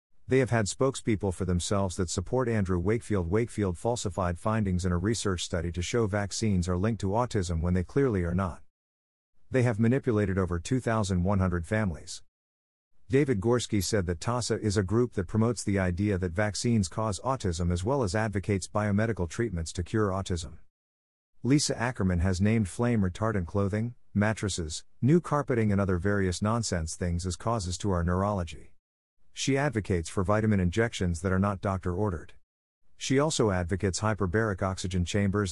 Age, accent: 50-69, American